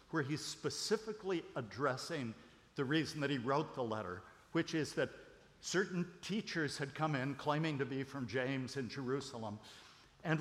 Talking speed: 155 wpm